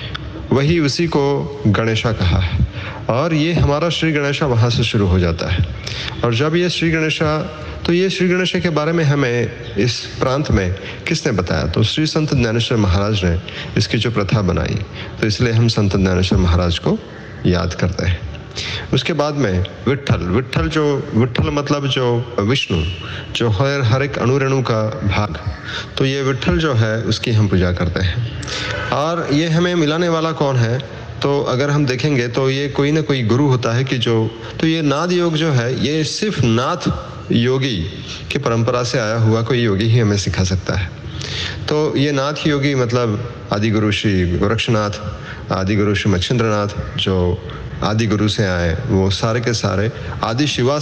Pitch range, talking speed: 100-135 Hz, 175 wpm